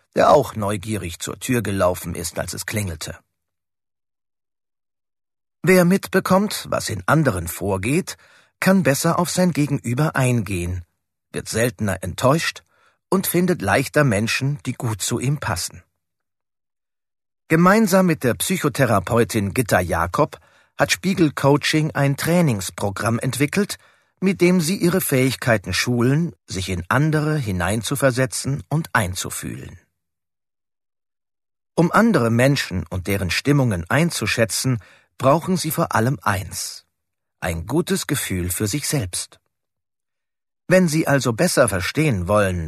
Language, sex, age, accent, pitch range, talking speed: German, male, 40-59, German, 95-155 Hz, 115 wpm